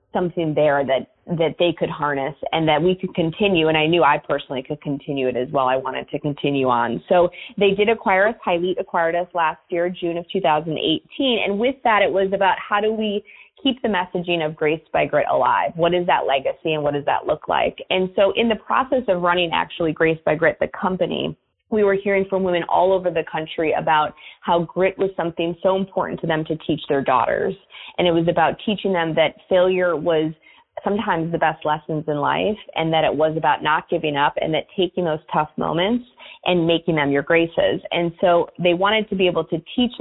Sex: female